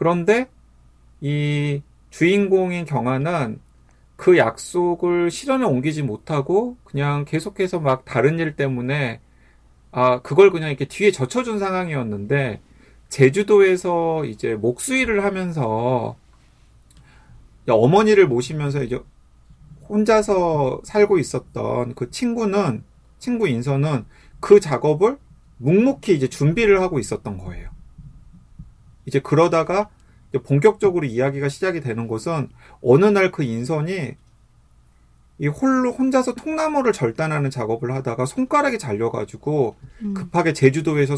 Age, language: 30-49, Korean